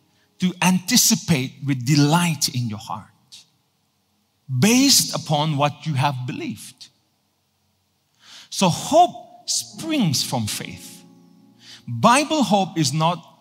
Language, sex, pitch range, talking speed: English, male, 115-175 Hz, 100 wpm